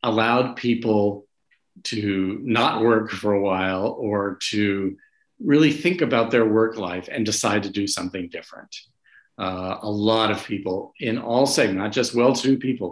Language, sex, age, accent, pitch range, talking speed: English, male, 50-69, American, 95-115 Hz, 160 wpm